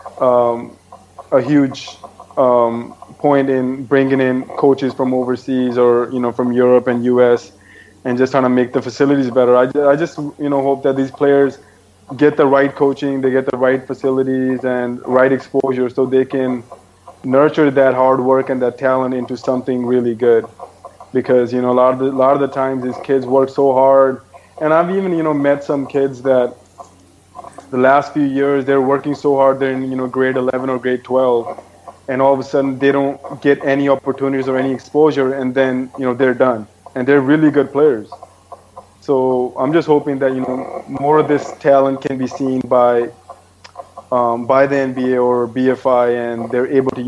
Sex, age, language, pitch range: male, 20-39, English, 125-135 Hz